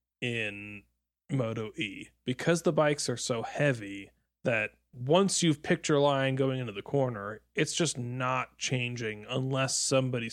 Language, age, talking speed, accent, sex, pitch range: English, 20-39, 145 wpm, American, male, 115-155 Hz